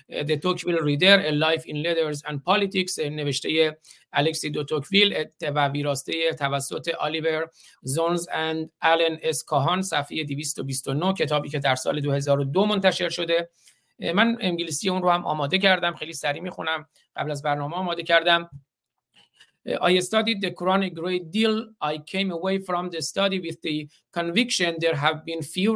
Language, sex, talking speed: Persian, male, 90 wpm